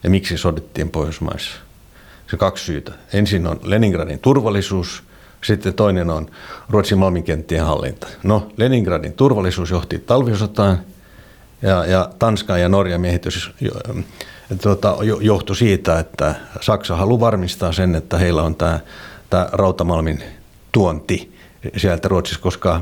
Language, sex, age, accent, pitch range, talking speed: Finnish, male, 60-79, native, 90-105 Hz, 130 wpm